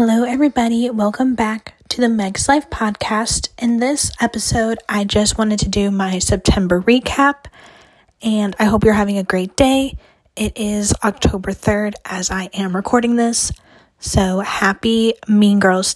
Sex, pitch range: female, 200-240 Hz